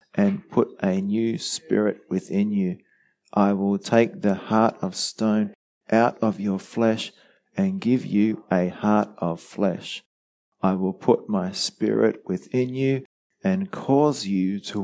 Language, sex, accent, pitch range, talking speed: English, male, Australian, 100-165 Hz, 145 wpm